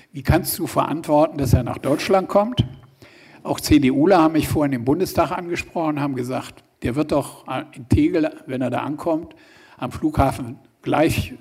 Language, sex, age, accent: German, male, 60-79, German